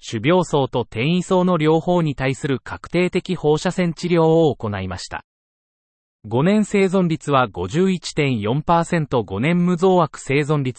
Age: 30-49